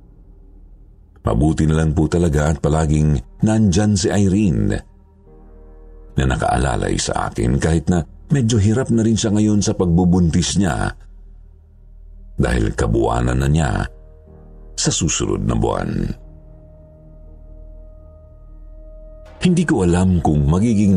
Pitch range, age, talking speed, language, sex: 80-95 Hz, 50-69, 110 wpm, Filipino, male